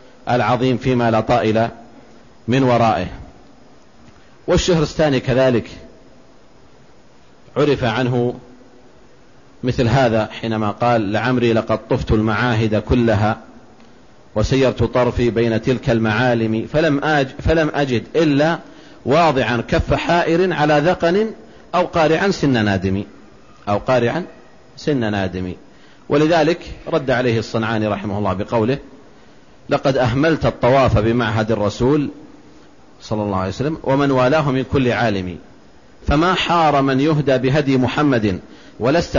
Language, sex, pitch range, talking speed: Arabic, male, 115-150 Hz, 110 wpm